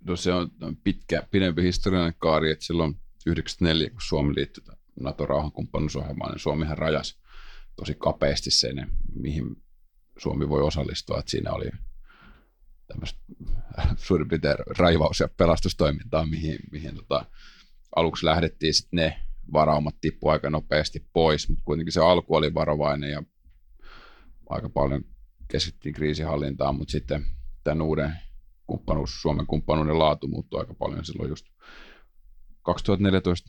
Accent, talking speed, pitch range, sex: native, 120 wpm, 75-85 Hz, male